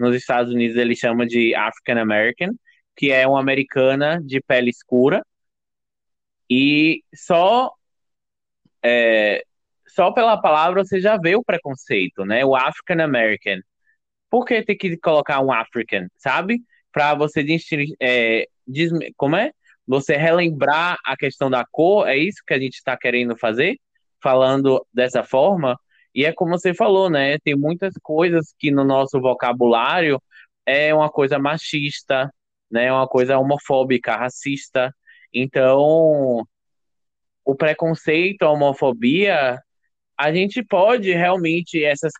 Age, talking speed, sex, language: 20-39, 125 wpm, male, Portuguese